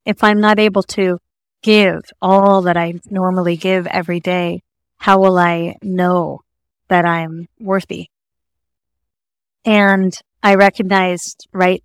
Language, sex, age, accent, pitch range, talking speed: English, female, 30-49, American, 175-200 Hz, 120 wpm